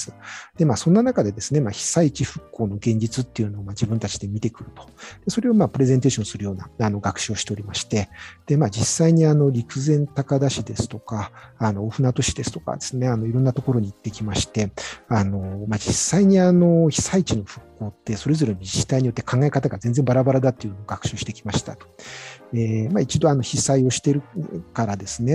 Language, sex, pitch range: Japanese, male, 105-140 Hz